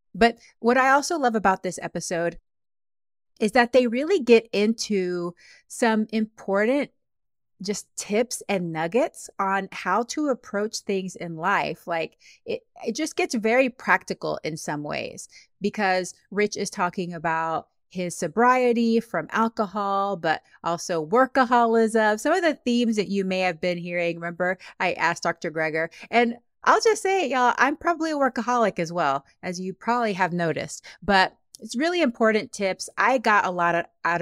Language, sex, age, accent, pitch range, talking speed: English, female, 30-49, American, 170-235 Hz, 160 wpm